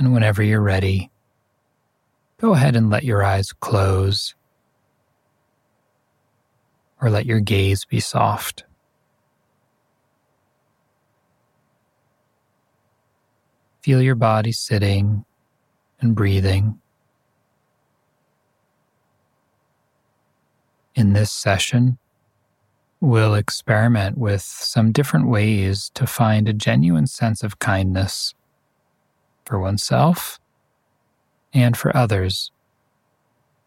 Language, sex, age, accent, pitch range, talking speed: English, male, 40-59, American, 100-120 Hz, 80 wpm